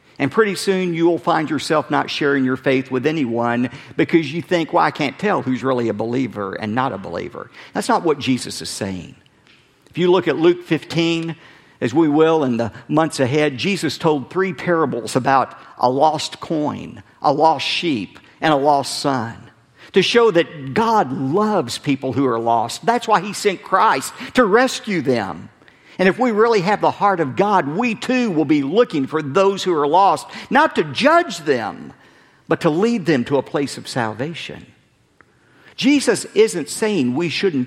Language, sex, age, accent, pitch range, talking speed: English, male, 50-69, American, 125-180 Hz, 185 wpm